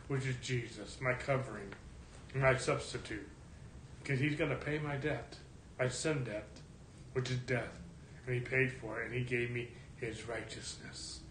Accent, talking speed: American, 165 wpm